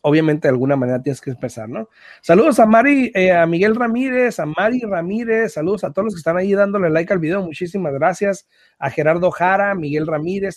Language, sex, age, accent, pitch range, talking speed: Spanish, male, 30-49, Mexican, 150-215 Hz, 205 wpm